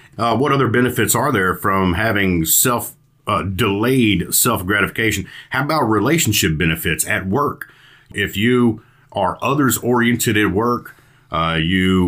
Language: English